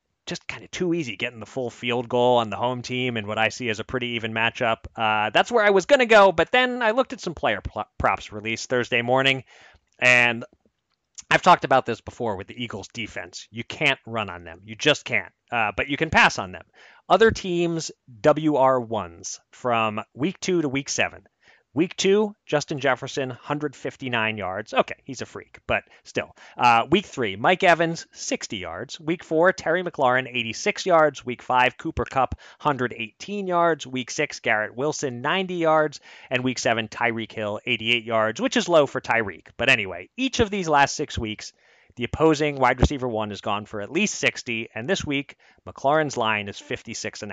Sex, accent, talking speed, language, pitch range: male, American, 195 wpm, English, 110-150 Hz